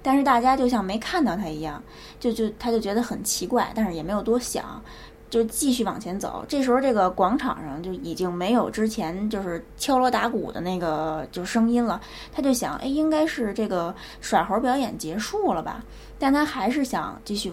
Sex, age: female, 20-39